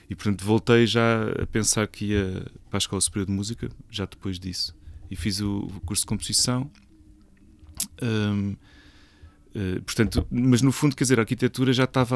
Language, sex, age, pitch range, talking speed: Portuguese, male, 30-49, 95-115 Hz, 170 wpm